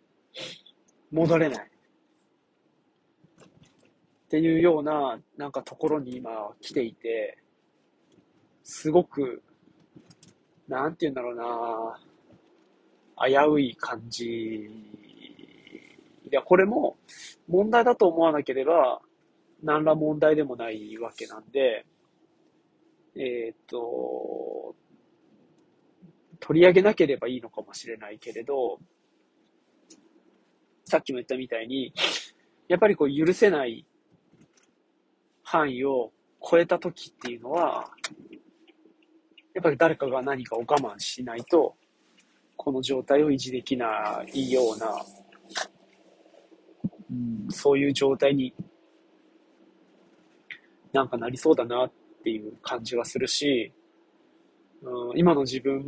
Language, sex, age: Japanese, male, 40-59